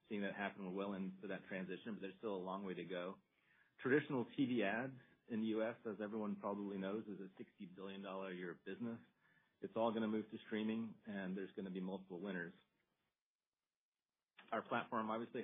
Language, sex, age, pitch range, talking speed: English, male, 40-59, 95-110 Hz, 195 wpm